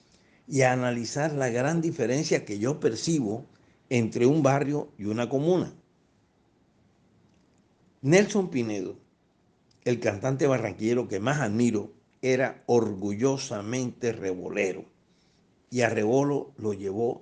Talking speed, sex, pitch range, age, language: 110 wpm, male, 110-145 Hz, 60-79, Spanish